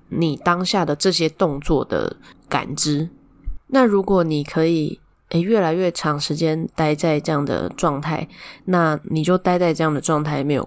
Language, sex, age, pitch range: Chinese, female, 10-29, 160-190 Hz